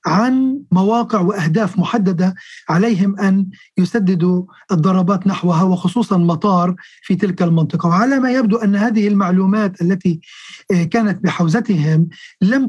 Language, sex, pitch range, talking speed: Arabic, male, 180-220 Hz, 115 wpm